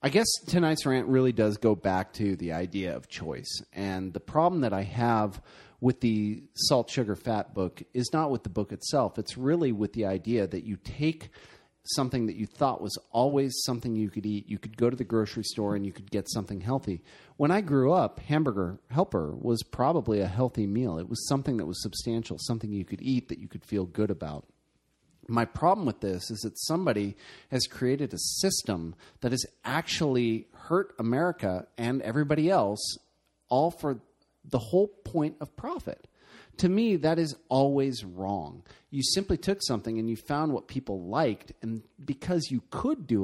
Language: English